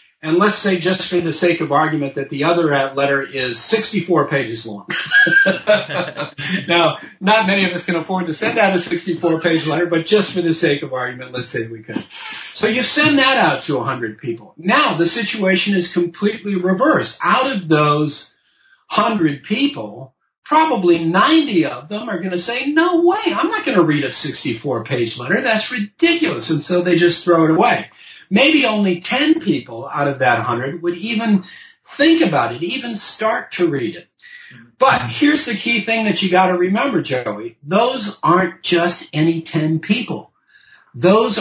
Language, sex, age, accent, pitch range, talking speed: English, male, 50-69, American, 160-225 Hz, 180 wpm